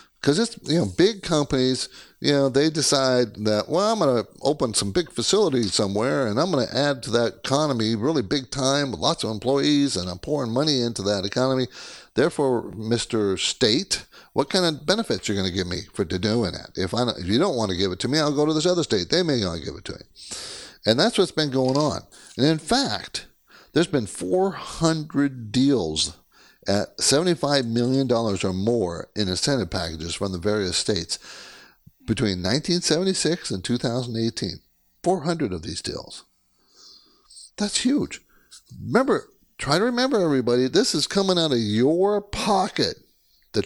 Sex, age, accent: male, 60-79, American